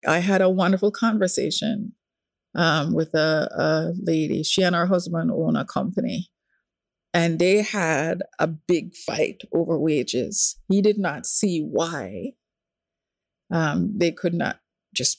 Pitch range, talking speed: 170-220 Hz, 140 wpm